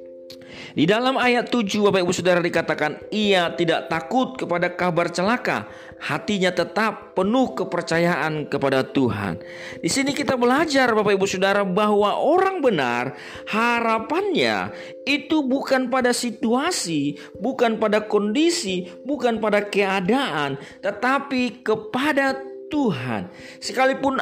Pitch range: 180-250 Hz